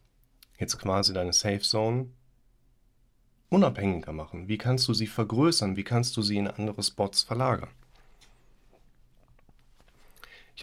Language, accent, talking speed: German, German, 115 wpm